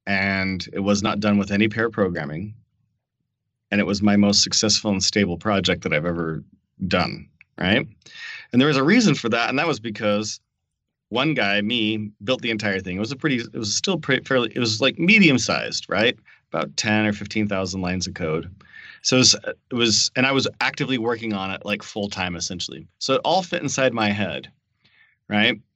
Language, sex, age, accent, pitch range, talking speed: English, male, 30-49, American, 95-115 Hz, 205 wpm